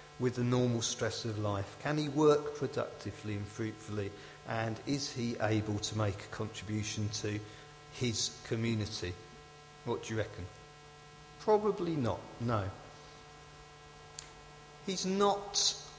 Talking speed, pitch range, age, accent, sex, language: 120 wpm, 110-150 Hz, 50-69, British, male, English